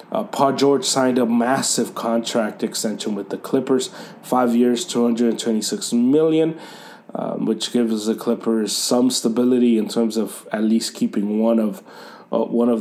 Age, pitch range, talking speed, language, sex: 30-49, 115-145 Hz, 155 wpm, English, male